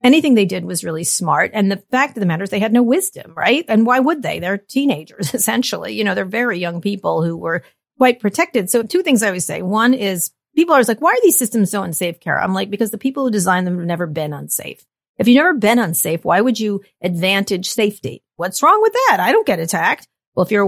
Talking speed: 250 wpm